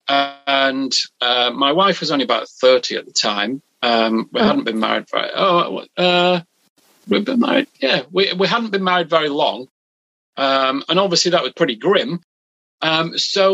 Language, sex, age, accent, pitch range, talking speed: English, male, 40-59, British, 135-180 Hz, 190 wpm